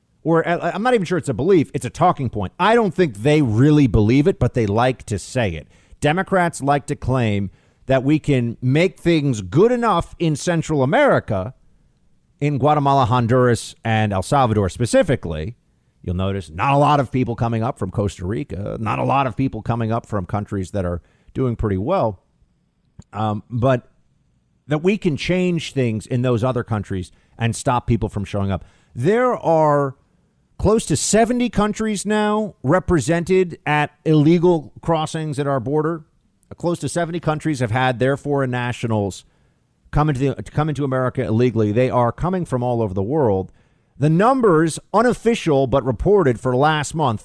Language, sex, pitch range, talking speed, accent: English, male, 115-170 Hz, 175 wpm, American